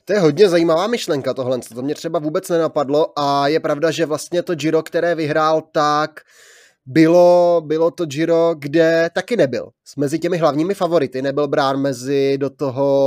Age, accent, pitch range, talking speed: 20-39, native, 145-175 Hz, 170 wpm